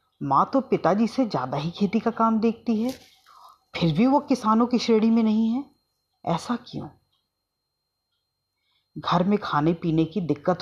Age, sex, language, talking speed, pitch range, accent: 30-49, female, Hindi, 160 wpm, 155-205 Hz, native